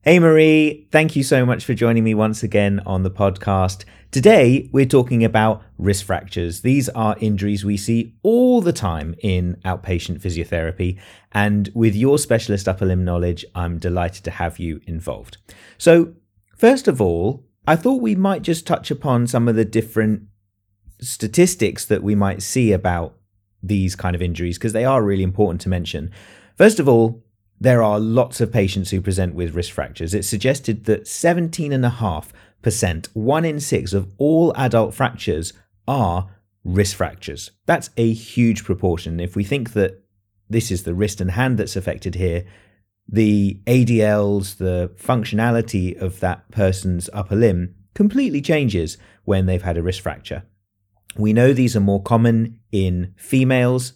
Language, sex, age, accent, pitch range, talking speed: English, male, 30-49, British, 95-120 Hz, 165 wpm